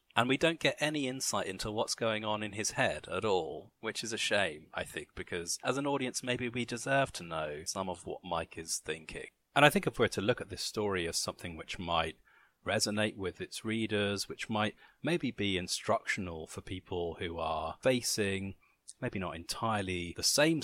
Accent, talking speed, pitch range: British, 200 wpm, 95-125 Hz